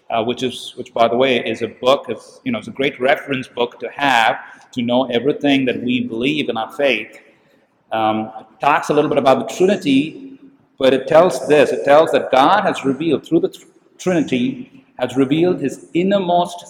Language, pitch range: English, 130-190 Hz